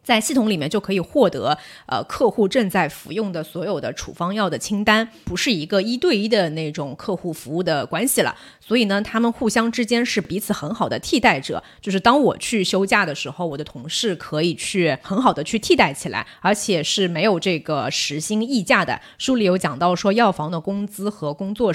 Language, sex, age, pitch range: Chinese, female, 20-39, 160-215 Hz